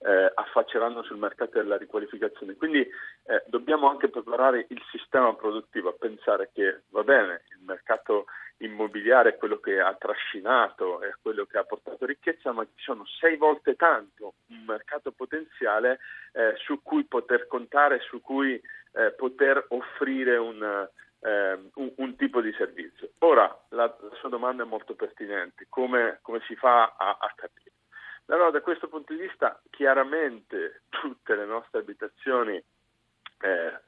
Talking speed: 150 wpm